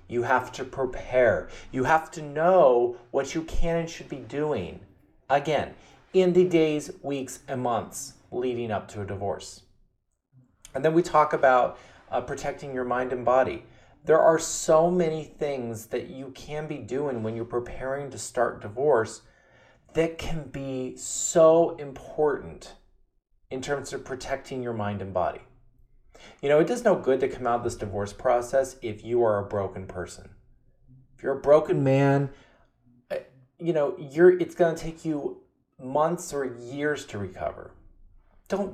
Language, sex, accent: English, male, American